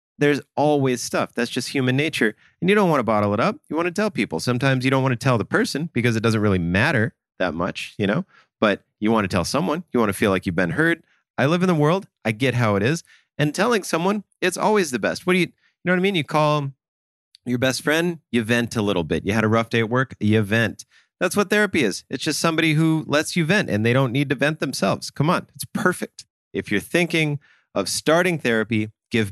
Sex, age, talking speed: male, 30-49, 255 wpm